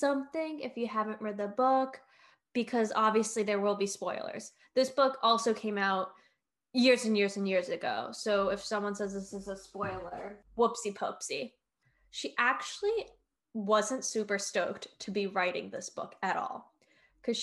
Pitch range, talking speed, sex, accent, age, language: 200-245 Hz, 160 wpm, female, American, 10-29, English